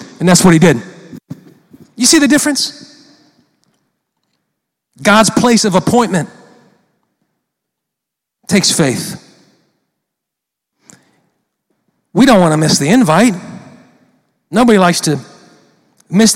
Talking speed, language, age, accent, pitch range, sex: 95 wpm, English, 40-59, American, 185-295 Hz, male